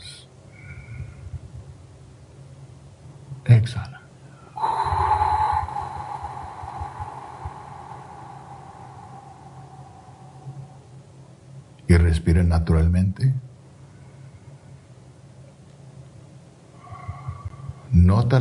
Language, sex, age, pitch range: Spanish, male, 60-79, 95-135 Hz